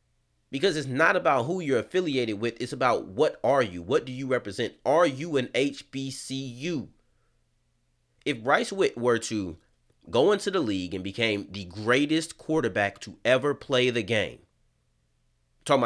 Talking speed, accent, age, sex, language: 155 wpm, American, 30-49, male, English